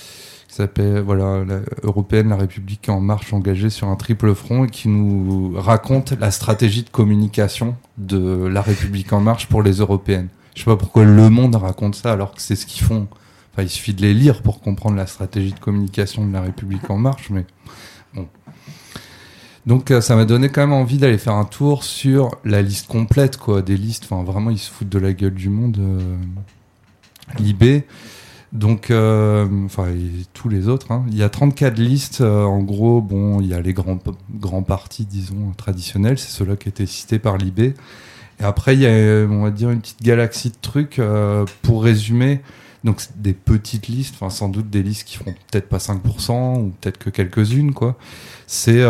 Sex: male